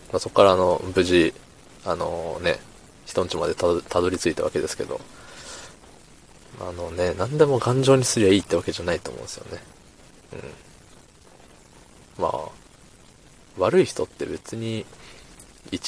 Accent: native